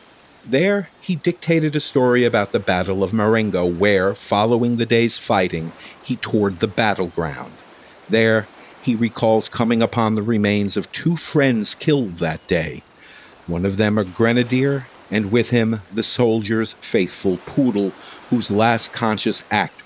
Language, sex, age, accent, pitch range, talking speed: English, male, 50-69, American, 100-120 Hz, 145 wpm